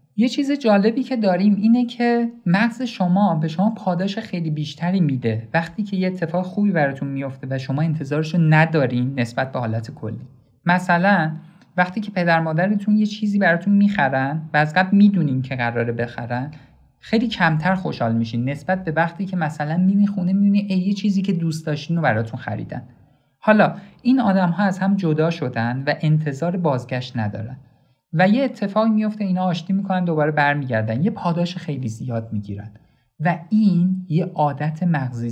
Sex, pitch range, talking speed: male, 130-185 Hz, 165 wpm